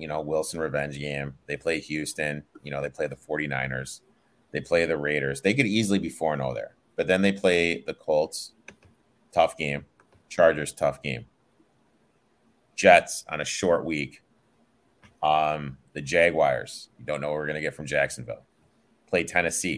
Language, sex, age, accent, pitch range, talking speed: English, male, 30-49, American, 75-85 Hz, 165 wpm